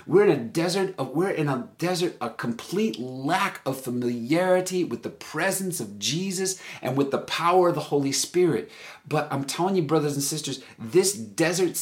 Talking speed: 155 wpm